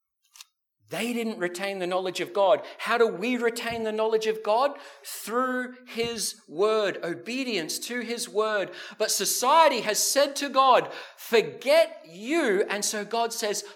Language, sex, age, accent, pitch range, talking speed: English, male, 40-59, Australian, 170-255 Hz, 150 wpm